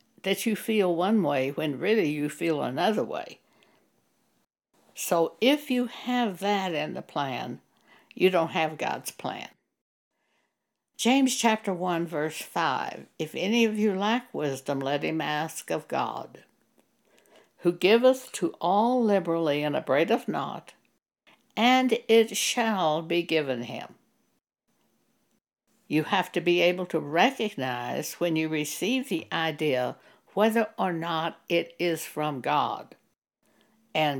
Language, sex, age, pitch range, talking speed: English, female, 60-79, 155-215 Hz, 130 wpm